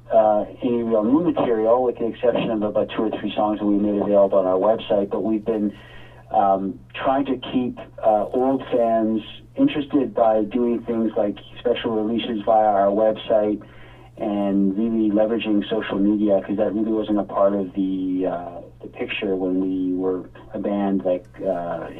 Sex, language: male, English